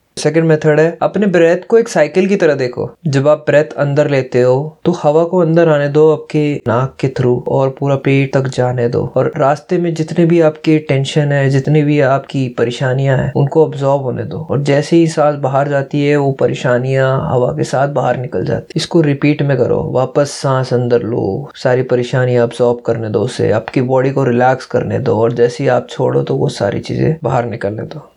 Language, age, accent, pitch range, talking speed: Hindi, 20-39, native, 135-160 Hz, 210 wpm